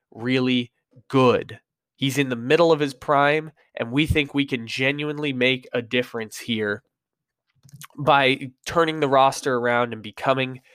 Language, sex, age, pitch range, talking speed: English, male, 20-39, 125-150 Hz, 145 wpm